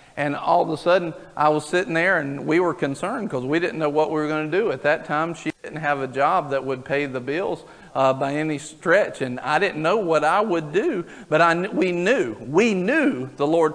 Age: 40-59